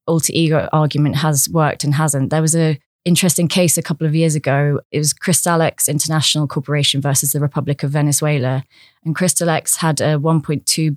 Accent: British